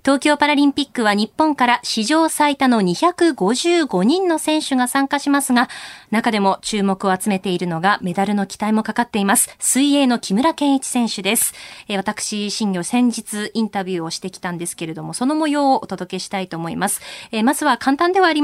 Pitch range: 205-280 Hz